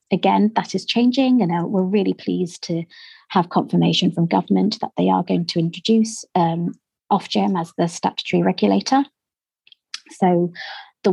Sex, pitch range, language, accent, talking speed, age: female, 165-200 Hz, English, British, 145 wpm, 30-49